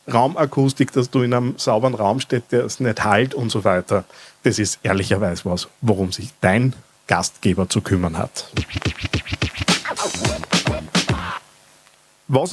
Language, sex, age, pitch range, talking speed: German, male, 50-69, 115-150 Hz, 130 wpm